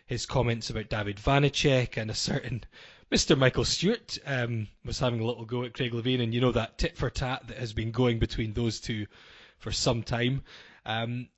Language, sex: English, male